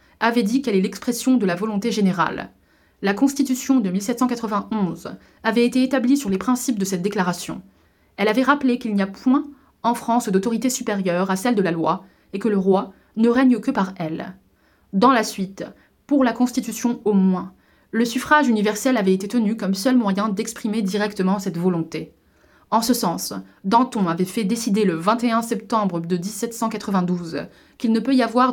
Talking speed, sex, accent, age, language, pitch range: 180 wpm, female, French, 20-39, French, 195-250 Hz